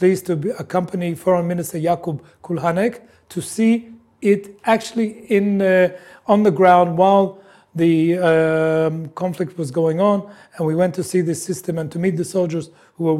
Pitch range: 175-215 Hz